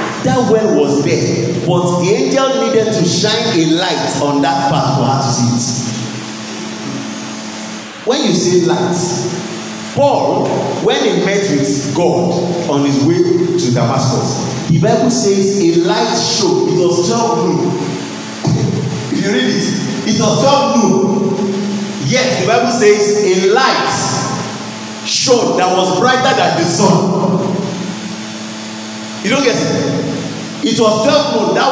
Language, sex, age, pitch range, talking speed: English, male, 50-69, 165-215 Hz, 140 wpm